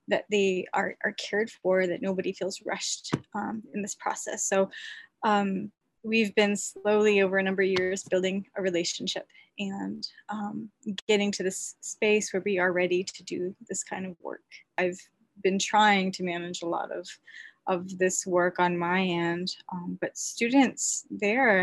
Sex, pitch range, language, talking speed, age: female, 185-210 Hz, English, 170 wpm, 20-39